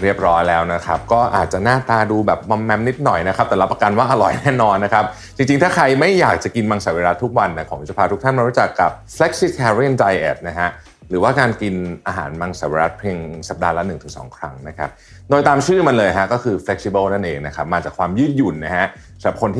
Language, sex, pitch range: Thai, male, 90-120 Hz